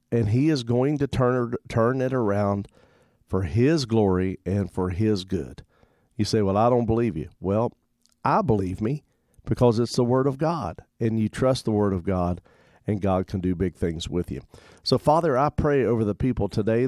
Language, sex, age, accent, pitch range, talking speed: English, male, 50-69, American, 100-125 Hz, 200 wpm